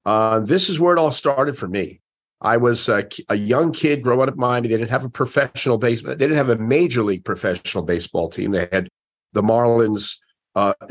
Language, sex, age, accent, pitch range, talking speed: English, male, 50-69, American, 105-140 Hz, 215 wpm